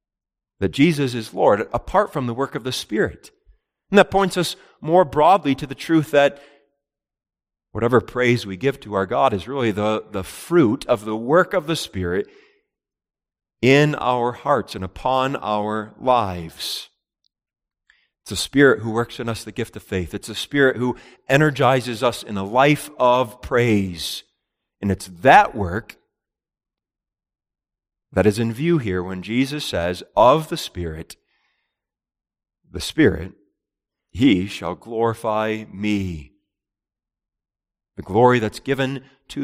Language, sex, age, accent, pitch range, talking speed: English, male, 40-59, American, 105-140 Hz, 145 wpm